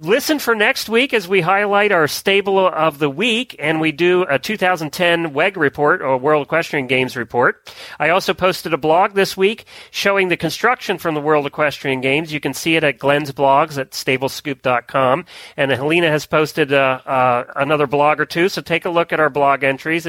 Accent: American